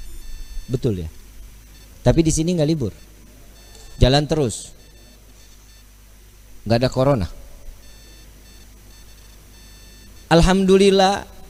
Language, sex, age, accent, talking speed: Indonesian, male, 40-59, native, 70 wpm